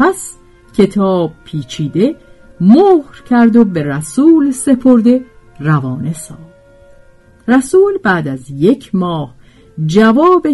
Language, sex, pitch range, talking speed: Persian, female, 155-225 Hz, 95 wpm